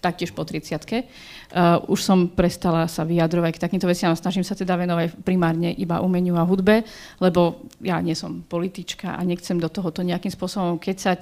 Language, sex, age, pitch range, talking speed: Slovak, female, 40-59, 175-205 Hz, 175 wpm